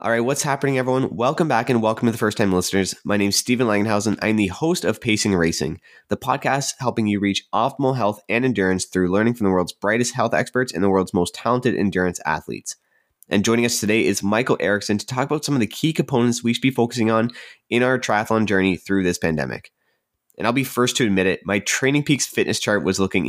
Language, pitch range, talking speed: English, 95-120 Hz, 230 wpm